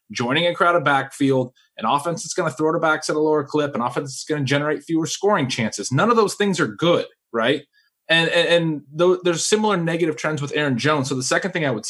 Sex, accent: male, American